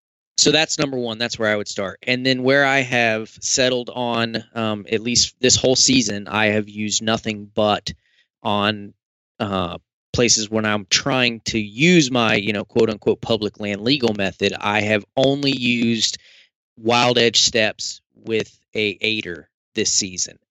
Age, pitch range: 20-39, 100-120 Hz